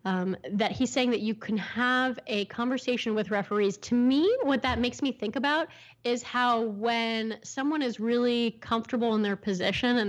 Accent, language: American, English